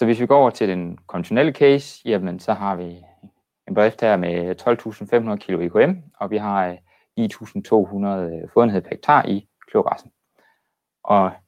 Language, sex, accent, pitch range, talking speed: Danish, male, native, 95-120 Hz, 145 wpm